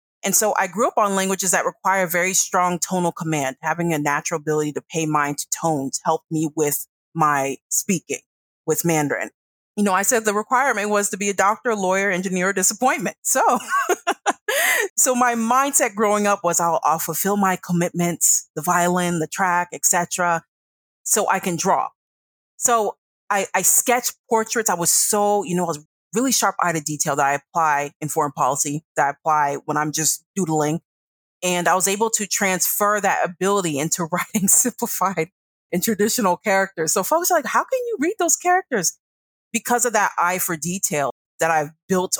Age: 30-49